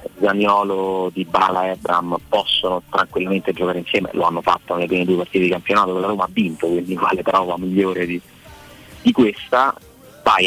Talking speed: 170 wpm